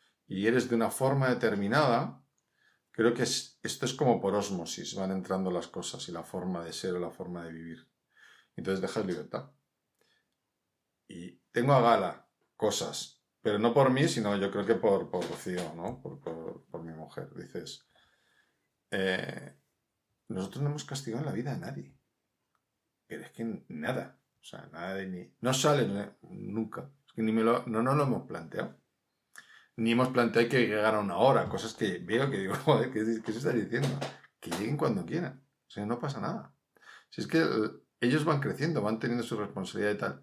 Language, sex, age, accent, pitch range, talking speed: Spanish, male, 50-69, Spanish, 95-120 Hz, 185 wpm